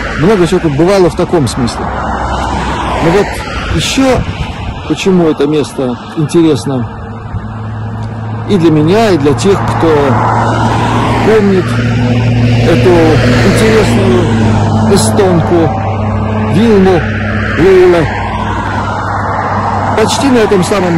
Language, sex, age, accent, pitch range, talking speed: Russian, male, 60-79, native, 110-175 Hz, 90 wpm